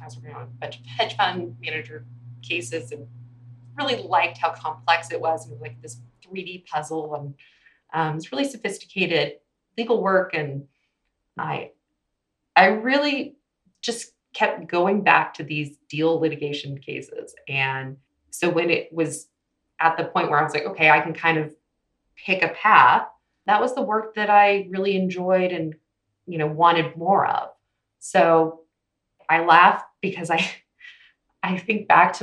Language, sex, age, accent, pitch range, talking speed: English, female, 20-39, American, 150-205 Hz, 160 wpm